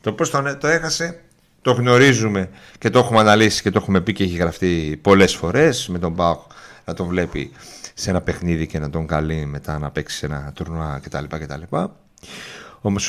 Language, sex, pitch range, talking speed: Greek, male, 85-125 Hz, 195 wpm